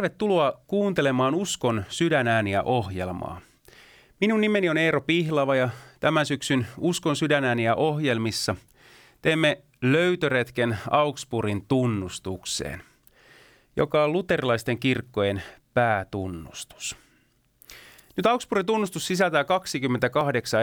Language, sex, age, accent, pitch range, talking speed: Finnish, male, 30-49, native, 115-160 Hz, 95 wpm